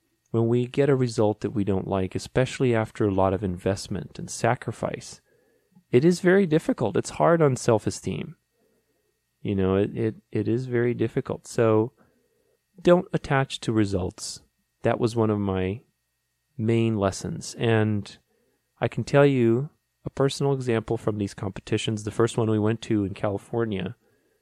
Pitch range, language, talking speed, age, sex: 100-130 Hz, English, 155 wpm, 30-49, male